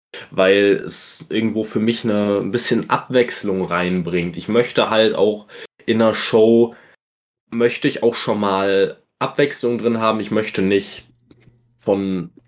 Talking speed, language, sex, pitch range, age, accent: 135 wpm, German, male, 105-120 Hz, 20-39, German